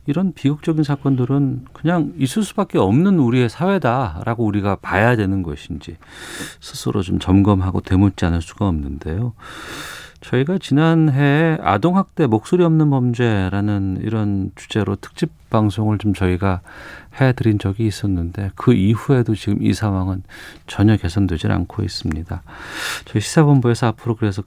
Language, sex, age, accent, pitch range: Korean, male, 40-59, native, 95-130 Hz